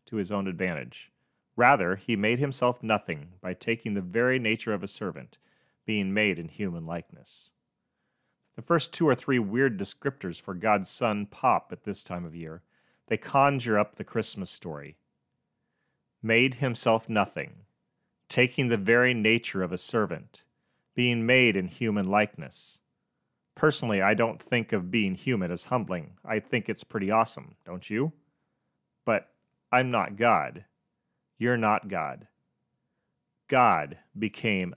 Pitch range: 100-120 Hz